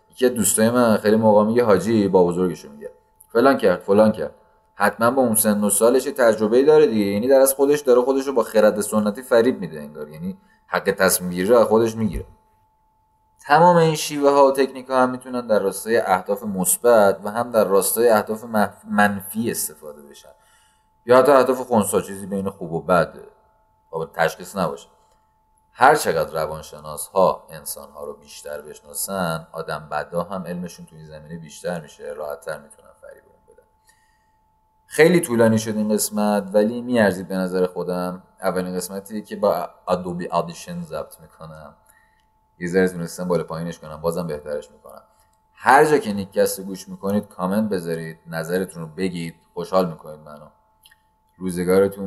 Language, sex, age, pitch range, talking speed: Persian, male, 30-49, 90-130 Hz, 155 wpm